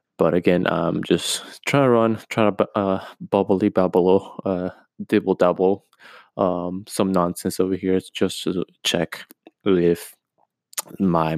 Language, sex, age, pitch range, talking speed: English, male, 20-39, 85-100 Hz, 130 wpm